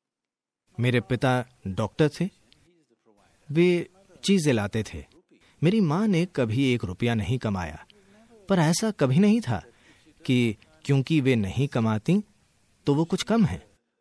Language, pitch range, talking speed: Hindi, 115-165 Hz, 135 wpm